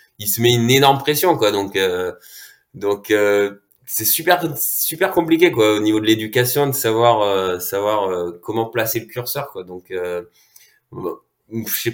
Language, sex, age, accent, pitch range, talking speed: French, male, 20-39, French, 100-145 Hz, 175 wpm